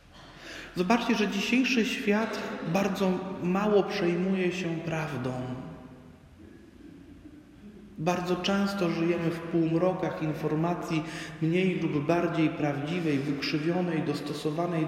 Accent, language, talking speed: native, Polish, 85 wpm